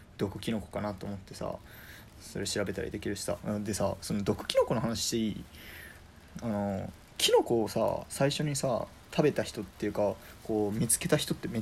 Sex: male